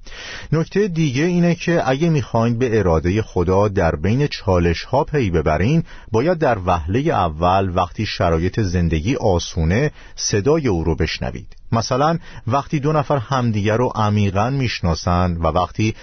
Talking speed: 140 wpm